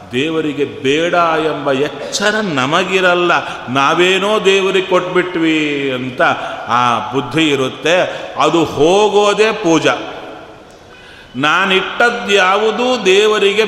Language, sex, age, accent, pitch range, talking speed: Kannada, male, 40-59, native, 140-200 Hz, 75 wpm